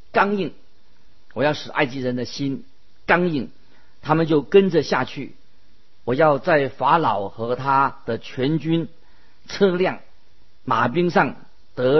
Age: 50-69